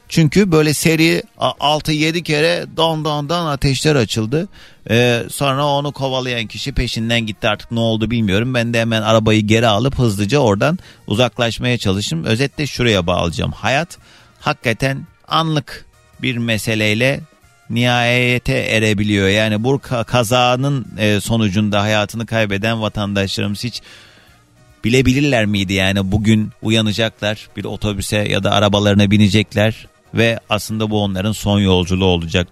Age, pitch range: 40-59, 105-130 Hz